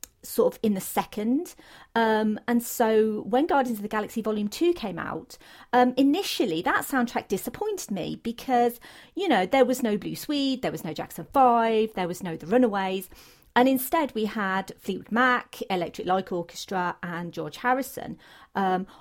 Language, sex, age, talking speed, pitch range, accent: English, female, 40-59, 170 wpm, 200-260 Hz, British